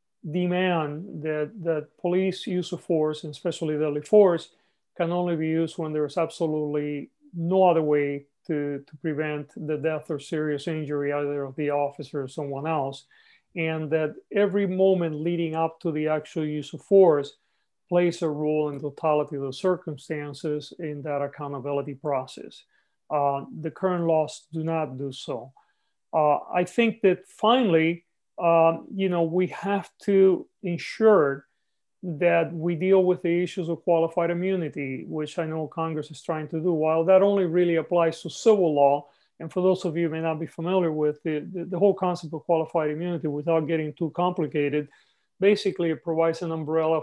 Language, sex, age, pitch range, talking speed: English, male, 40-59, 150-175 Hz, 170 wpm